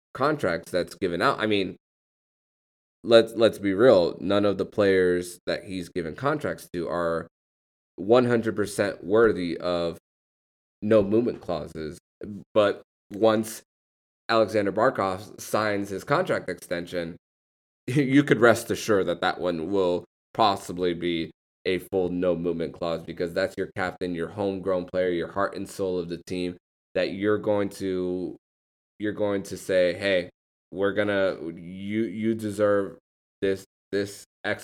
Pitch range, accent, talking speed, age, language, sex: 90-105 Hz, American, 140 wpm, 20-39, English, male